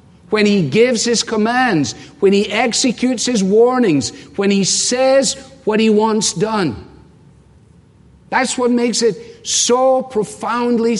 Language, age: English, 50-69